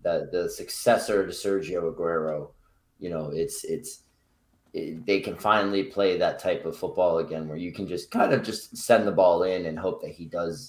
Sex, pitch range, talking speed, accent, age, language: male, 85-120 Hz, 195 wpm, American, 20-39, English